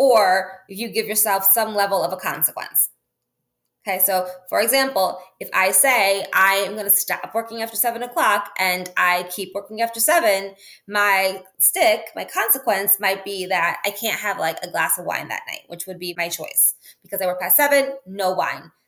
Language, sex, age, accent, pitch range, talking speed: English, female, 20-39, American, 190-240 Hz, 190 wpm